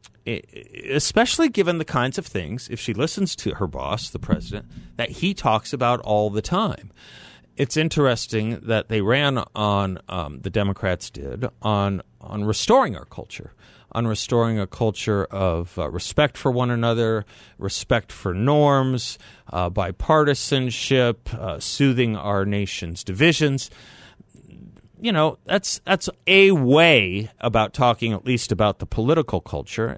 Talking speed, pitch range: 140 wpm, 100-135 Hz